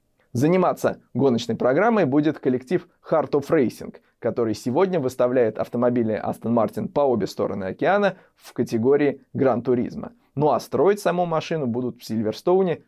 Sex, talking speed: male, 135 wpm